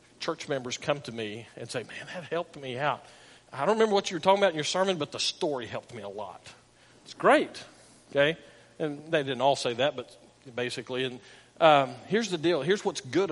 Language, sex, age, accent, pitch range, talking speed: English, male, 50-69, American, 130-165 Hz, 220 wpm